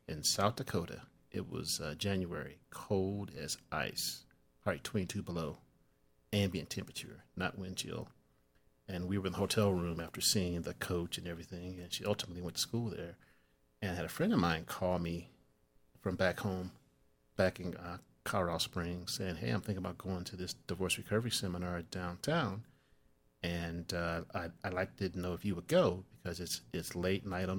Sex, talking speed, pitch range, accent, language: male, 180 wpm, 85-100 Hz, American, English